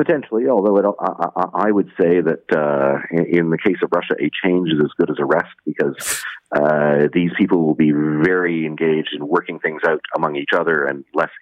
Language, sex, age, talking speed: English, male, 40-59, 210 wpm